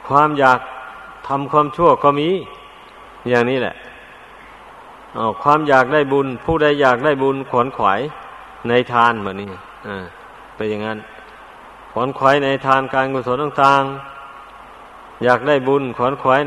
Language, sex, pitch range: Thai, male, 125-145 Hz